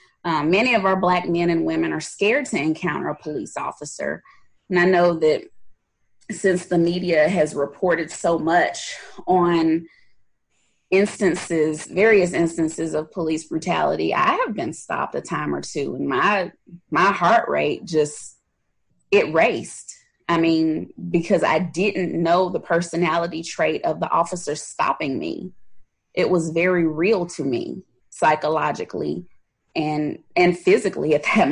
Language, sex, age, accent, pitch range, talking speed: English, female, 20-39, American, 165-195 Hz, 145 wpm